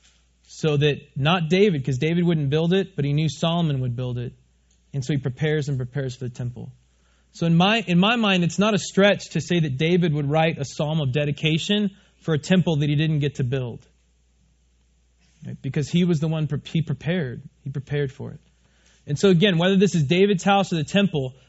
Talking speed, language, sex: 220 wpm, English, male